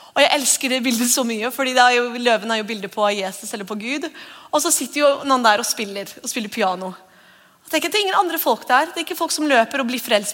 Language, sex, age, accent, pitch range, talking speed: English, female, 30-49, Swedish, 215-280 Hz, 275 wpm